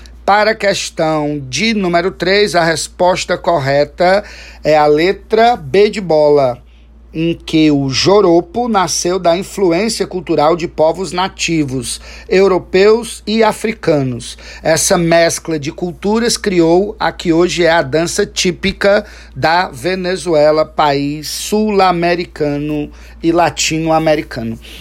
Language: Portuguese